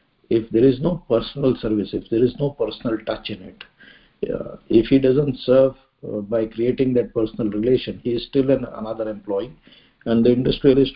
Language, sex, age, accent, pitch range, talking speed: English, male, 50-69, Indian, 115-135 Hz, 180 wpm